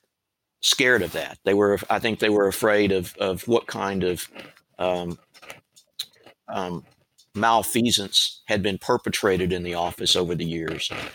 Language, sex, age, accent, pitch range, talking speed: English, male, 50-69, American, 90-110 Hz, 145 wpm